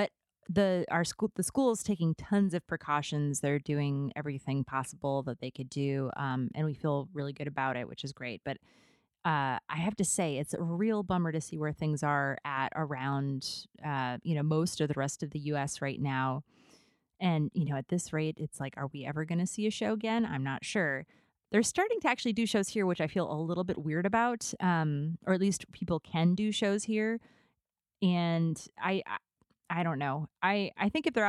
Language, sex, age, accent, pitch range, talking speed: English, female, 30-49, American, 145-190 Hz, 215 wpm